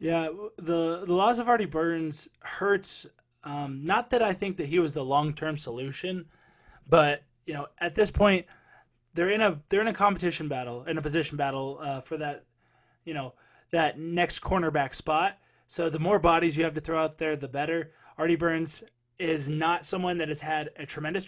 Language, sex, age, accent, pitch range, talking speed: English, male, 20-39, American, 150-180 Hz, 195 wpm